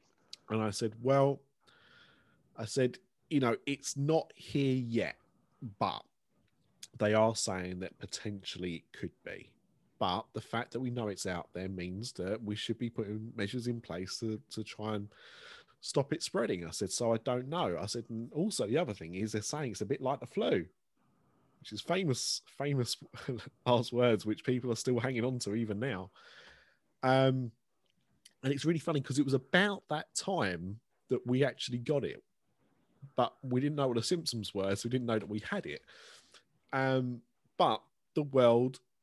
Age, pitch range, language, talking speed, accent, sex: 30-49, 110-140 Hz, English, 185 wpm, British, male